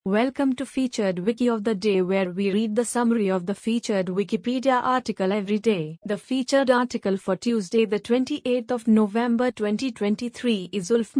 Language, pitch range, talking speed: English, 200-245 Hz, 155 wpm